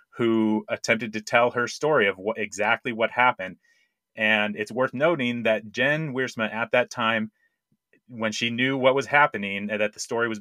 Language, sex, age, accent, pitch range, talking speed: English, male, 30-49, American, 105-130 Hz, 185 wpm